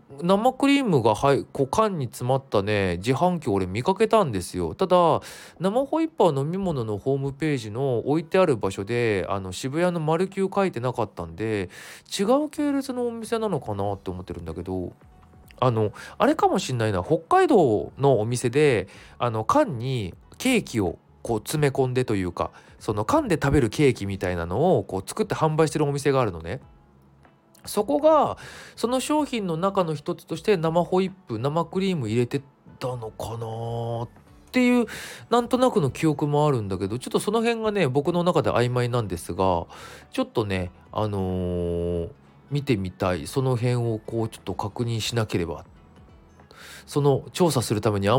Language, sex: Japanese, male